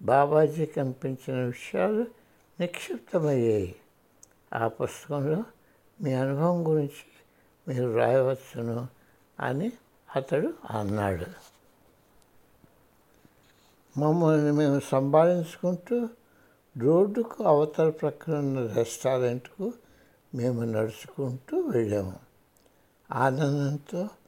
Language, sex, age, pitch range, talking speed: Hindi, male, 60-79, 125-170 Hz, 35 wpm